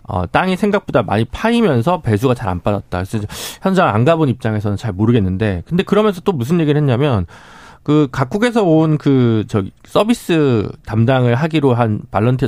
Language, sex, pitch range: Korean, male, 110-180 Hz